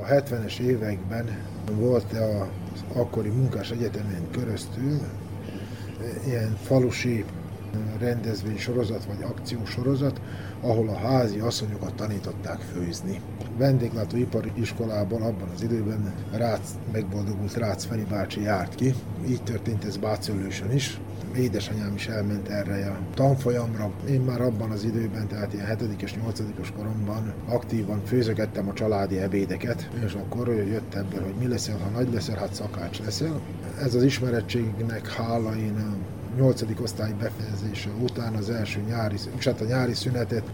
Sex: male